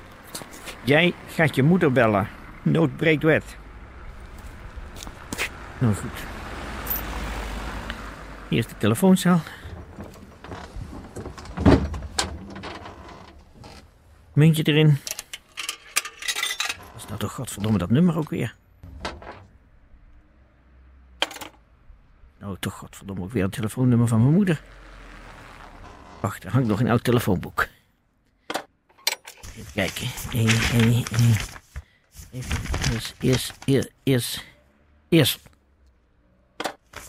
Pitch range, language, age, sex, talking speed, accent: 85-130 Hz, Dutch, 50-69, male, 85 wpm, Dutch